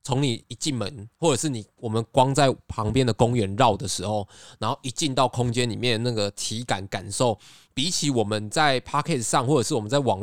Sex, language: male, Chinese